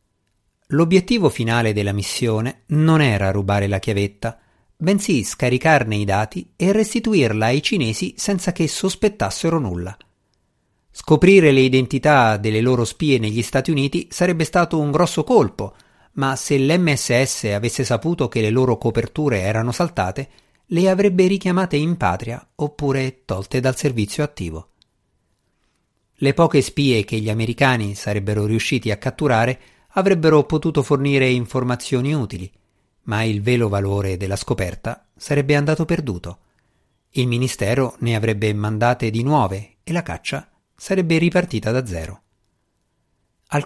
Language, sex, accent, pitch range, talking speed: Italian, male, native, 105-150 Hz, 130 wpm